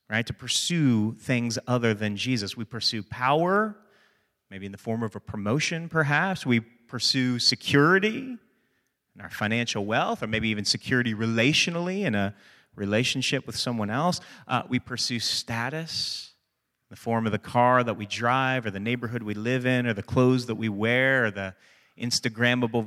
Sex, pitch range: male, 115-185 Hz